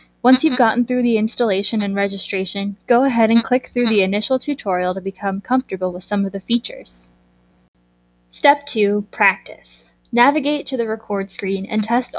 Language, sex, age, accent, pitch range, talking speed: English, female, 10-29, American, 190-235 Hz, 165 wpm